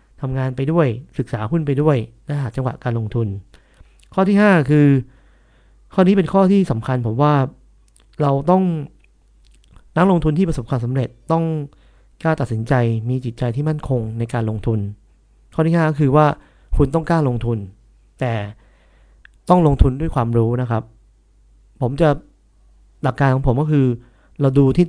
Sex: male